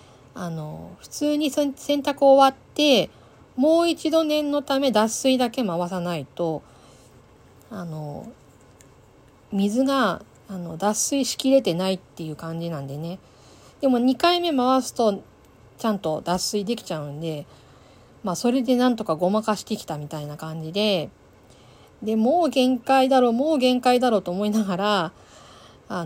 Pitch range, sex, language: 165-245 Hz, female, Japanese